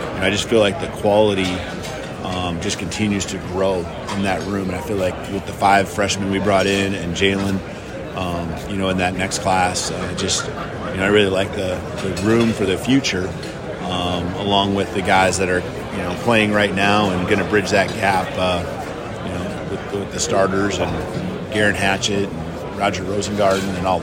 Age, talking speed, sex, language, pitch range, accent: 30-49, 200 wpm, male, English, 95-110 Hz, American